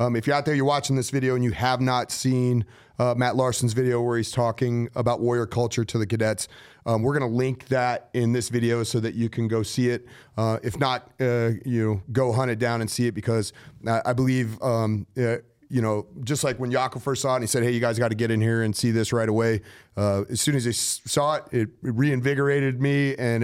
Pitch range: 110-125 Hz